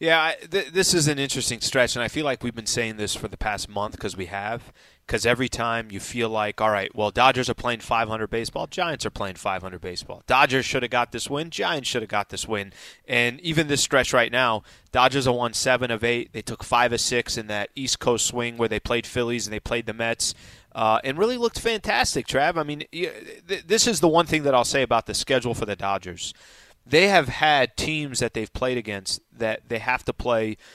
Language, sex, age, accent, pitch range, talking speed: English, male, 30-49, American, 115-145 Hz, 235 wpm